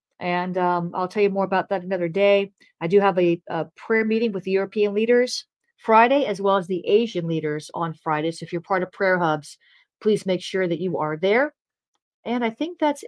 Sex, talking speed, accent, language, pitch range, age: female, 220 wpm, American, English, 180-215 Hz, 40-59